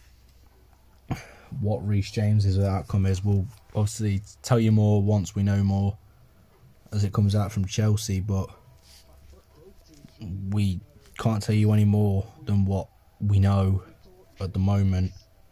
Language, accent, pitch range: English, British, 95-115 Hz